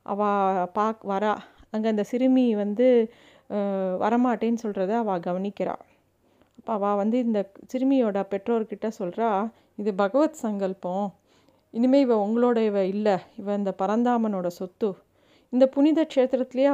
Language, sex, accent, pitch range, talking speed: Tamil, female, native, 200-240 Hz, 110 wpm